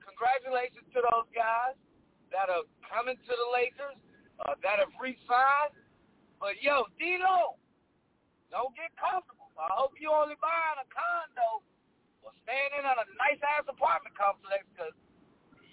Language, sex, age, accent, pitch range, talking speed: English, male, 50-69, American, 210-325 Hz, 135 wpm